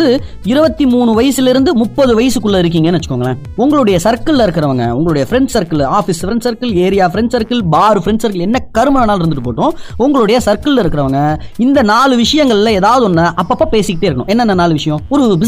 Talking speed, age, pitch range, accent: 50 wpm, 20-39, 165-230 Hz, native